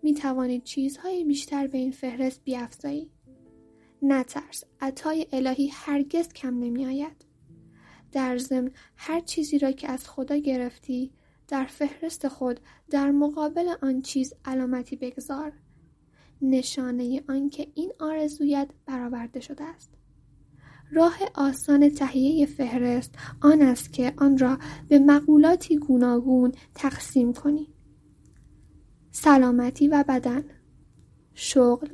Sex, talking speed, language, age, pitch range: female, 110 wpm, Persian, 10-29, 260-295 Hz